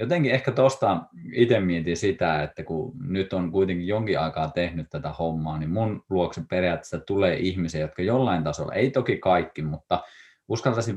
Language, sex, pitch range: Finnish, male, 85-120 Hz